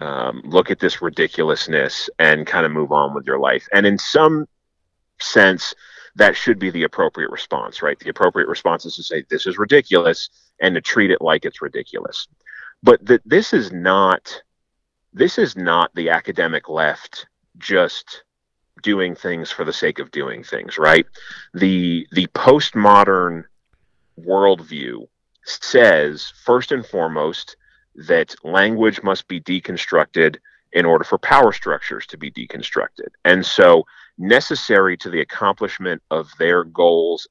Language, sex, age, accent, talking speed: English, male, 30-49, American, 145 wpm